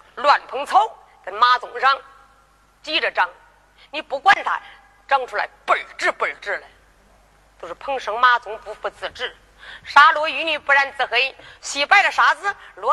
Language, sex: Chinese, female